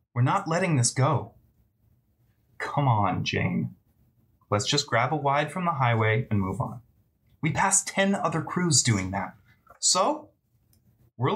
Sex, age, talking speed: male, 30-49, 150 wpm